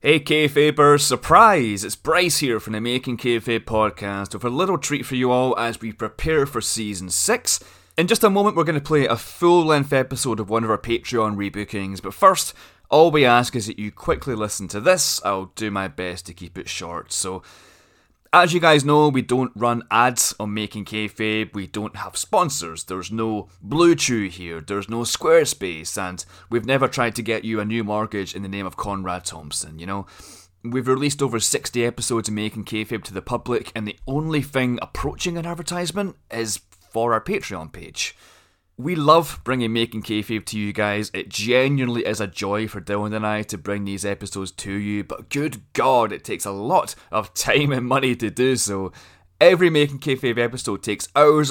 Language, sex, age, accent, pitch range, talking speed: English, male, 20-39, British, 100-130 Hz, 195 wpm